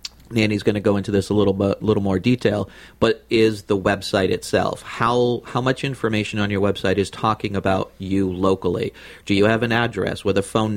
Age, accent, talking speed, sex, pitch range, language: 30-49, American, 205 wpm, male, 95-105 Hz, English